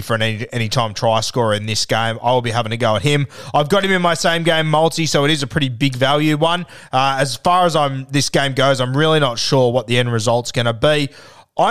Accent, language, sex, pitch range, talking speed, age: Australian, English, male, 125-150 Hz, 260 wpm, 20-39